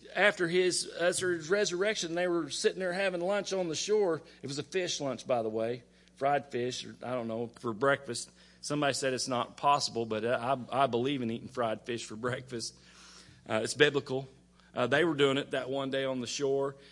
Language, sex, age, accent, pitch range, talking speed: English, male, 40-59, American, 115-150 Hz, 210 wpm